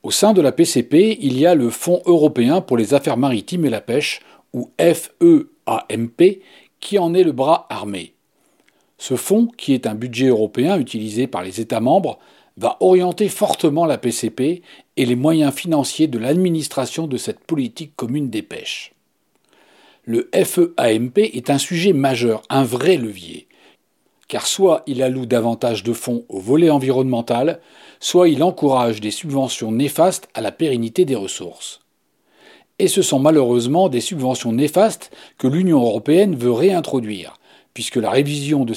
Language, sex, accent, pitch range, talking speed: French, male, French, 120-170 Hz, 155 wpm